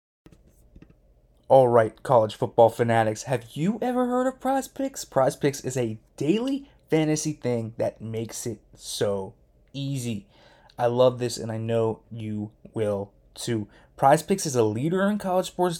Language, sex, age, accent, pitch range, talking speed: English, male, 20-39, American, 115-150 Hz, 145 wpm